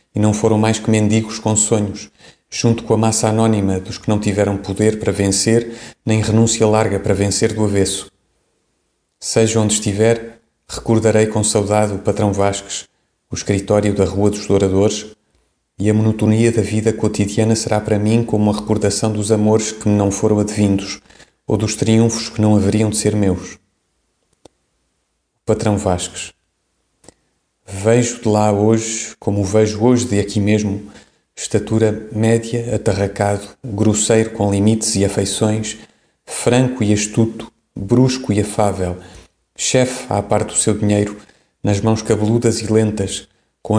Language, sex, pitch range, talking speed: Portuguese, male, 100-110 Hz, 150 wpm